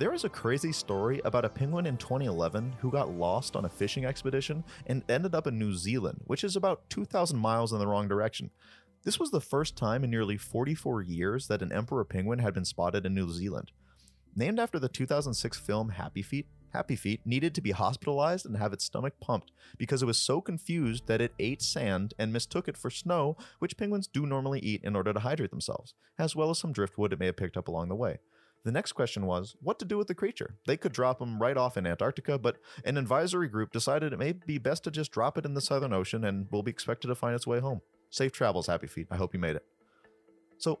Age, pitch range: 30-49, 105-145 Hz